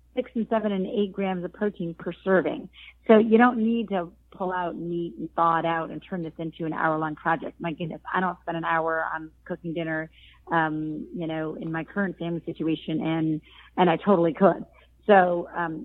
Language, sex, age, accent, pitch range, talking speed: English, female, 30-49, American, 165-195 Hz, 205 wpm